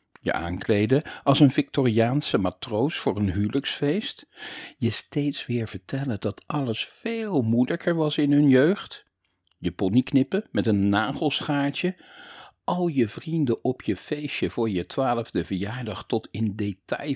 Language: Dutch